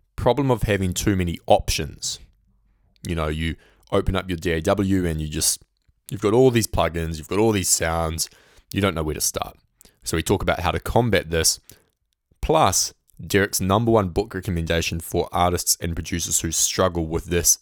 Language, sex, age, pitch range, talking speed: English, male, 20-39, 85-105 Hz, 185 wpm